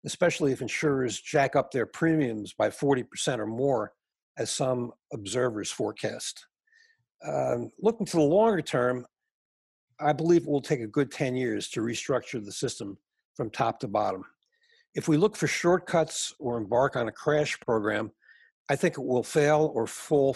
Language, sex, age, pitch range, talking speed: English, male, 60-79, 125-160 Hz, 165 wpm